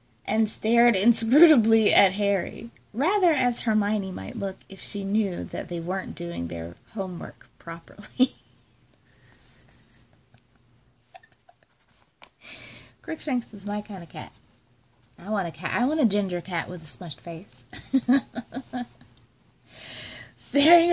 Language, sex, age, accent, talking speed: English, female, 20-39, American, 115 wpm